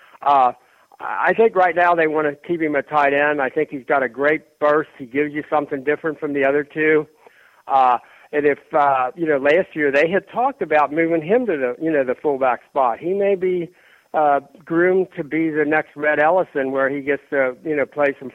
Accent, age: American, 60-79